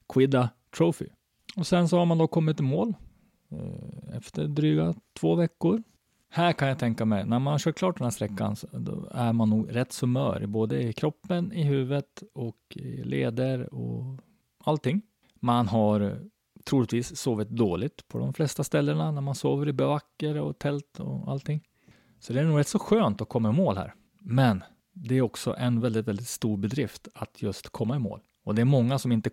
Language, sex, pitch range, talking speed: Swedish, male, 115-165 Hz, 190 wpm